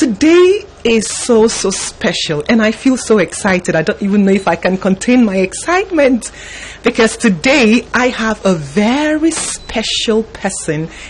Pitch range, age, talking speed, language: 180-255 Hz, 30-49, 155 wpm, English